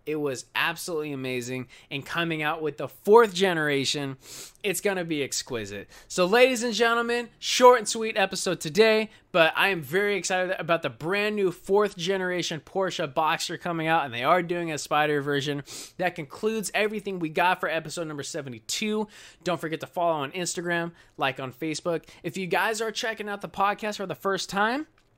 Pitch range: 145-190 Hz